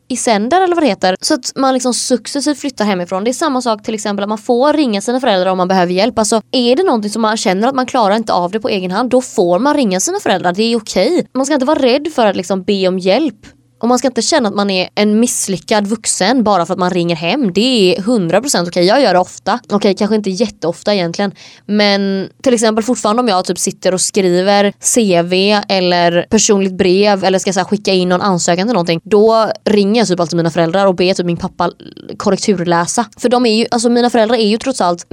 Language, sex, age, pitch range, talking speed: Swedish, female, 20-39, 185-240 Hz, 245 wpm